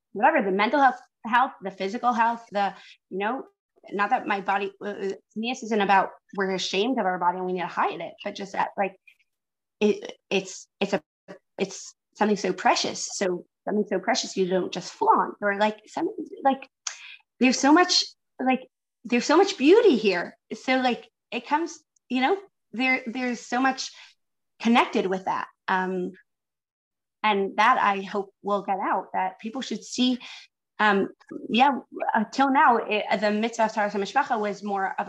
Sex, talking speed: female, 170 wpm